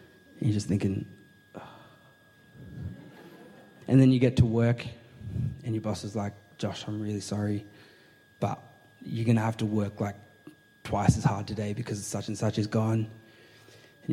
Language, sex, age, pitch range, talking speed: English, male, 20-39, 110-135 Hz, 165 wpm